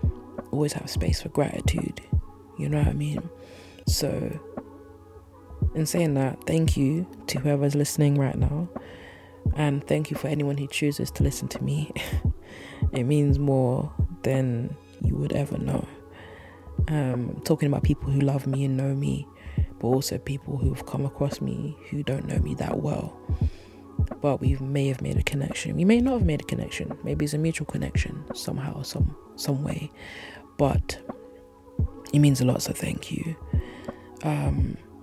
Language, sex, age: English, female, 20-39